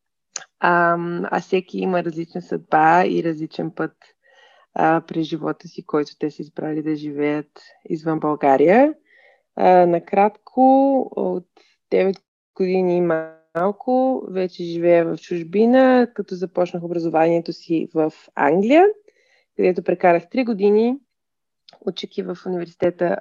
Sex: female